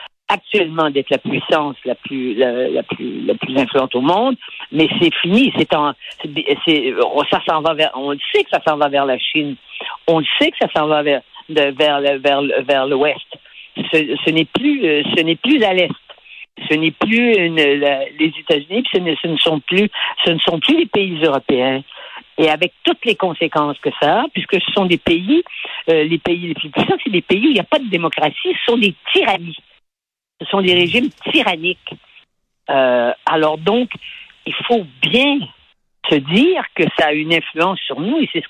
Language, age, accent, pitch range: French, 50-69, French, 150-210 Hz